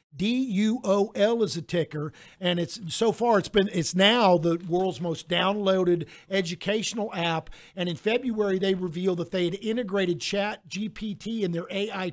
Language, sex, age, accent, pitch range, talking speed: English, male, 50-69, American, 170-205 Hz, 175 wpm